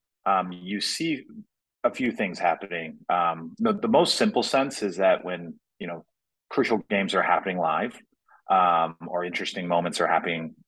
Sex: male